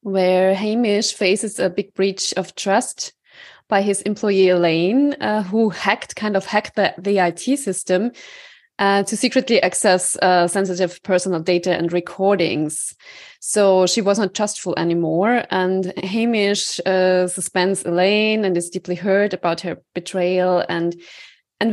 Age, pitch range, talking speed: 20-39, 180-210 Hz, 140 wpm